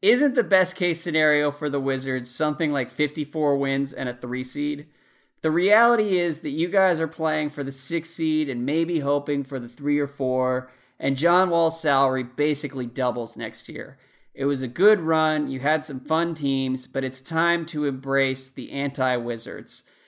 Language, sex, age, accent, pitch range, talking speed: English, male, 20-39, American, 130-155 Hz, 180 wpm